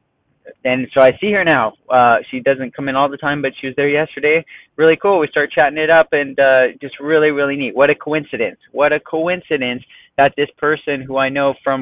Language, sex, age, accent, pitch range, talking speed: English, male, 20-39, American, 125-150 Hz, 230 wpm